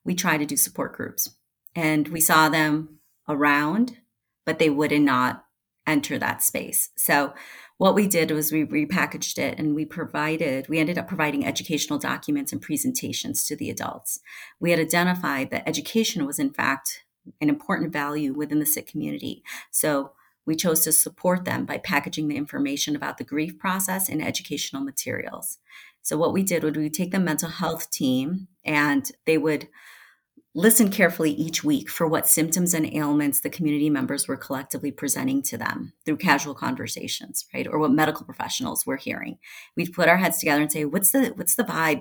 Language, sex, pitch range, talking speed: English, female, 150-185 Hz, 180 wpm